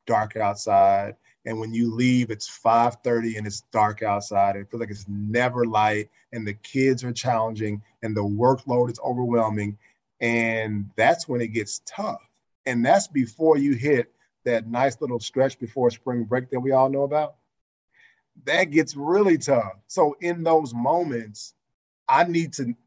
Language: English